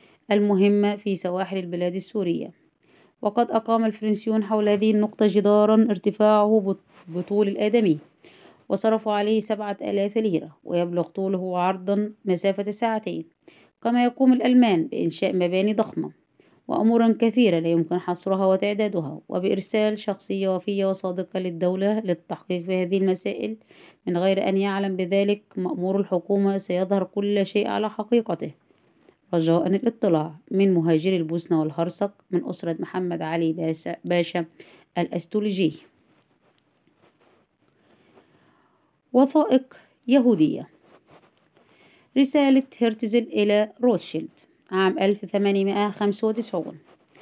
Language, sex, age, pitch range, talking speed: Arabic, female, 20-39, 180-215 Hz, 100 wpm